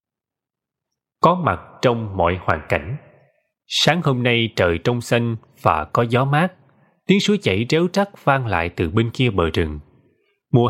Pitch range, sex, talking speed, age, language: 100-145 Hz, male, 165 wpm, 20-39, Vietnamese